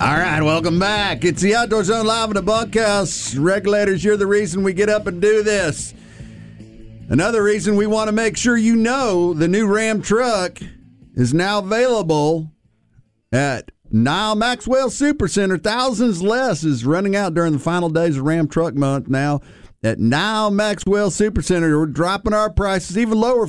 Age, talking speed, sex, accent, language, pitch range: 50-69, 170 wpm, male, American, English, 155-215 Hz